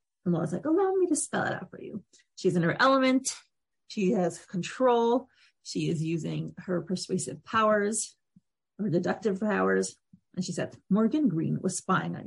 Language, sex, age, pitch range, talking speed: English, female, 30-49, 180-235 Hz, 170 wpm